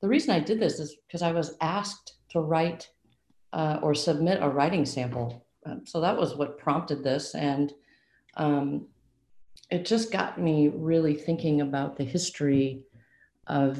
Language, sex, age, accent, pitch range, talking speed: English, female, 40-59, American, 145-185 Hz, 160 wpm